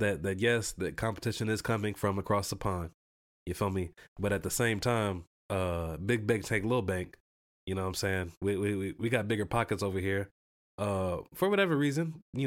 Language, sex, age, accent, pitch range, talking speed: English, male, 20-39, American, 95-115 Hz, 210 wpm